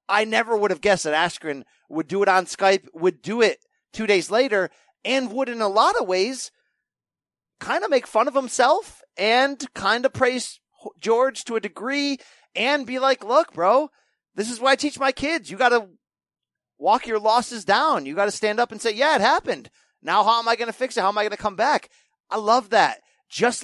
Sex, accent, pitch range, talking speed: male, American, 175-240 Hz, 220 wpm